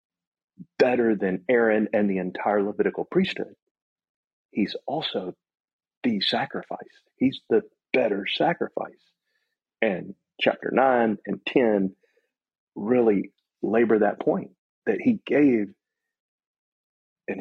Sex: male